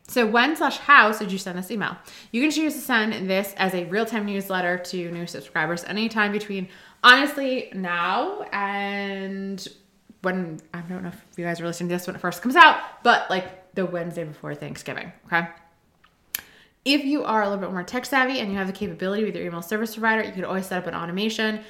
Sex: female